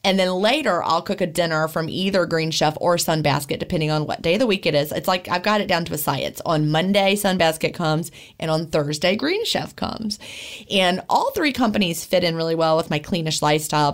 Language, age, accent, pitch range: English, 30-49, American, 160-200 Hz